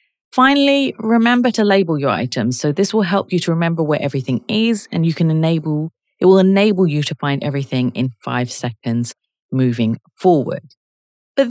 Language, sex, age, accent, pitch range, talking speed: English, female, 30-49, British, 130-205 Hz, 170 wpm